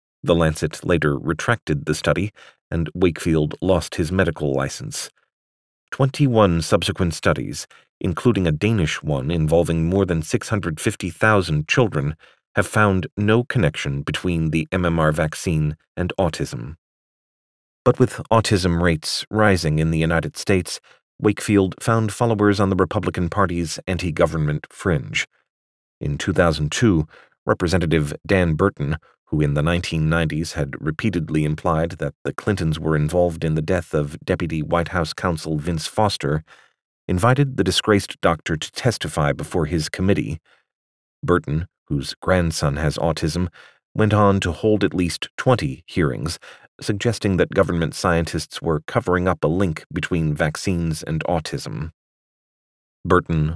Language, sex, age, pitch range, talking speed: English, male, 40-59, 75-95 Hz, 130 wpm